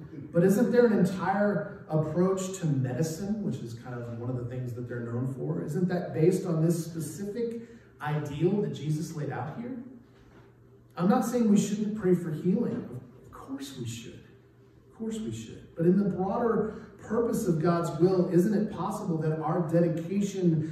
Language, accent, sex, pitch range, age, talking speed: English, American, male, 135-185 Hz, 30-49, 180 wpm